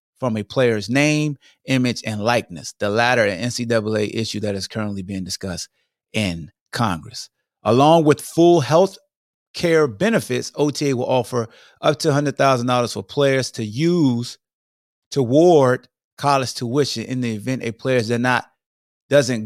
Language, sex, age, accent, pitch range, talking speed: English, male, 30-49, American, 105-135 Hz, 140 wpm